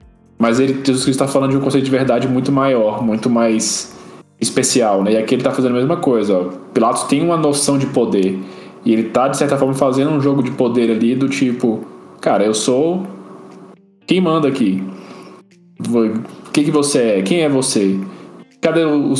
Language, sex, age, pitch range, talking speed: Portuguese, male, 10-29, 115-140 Hz, 195 wpm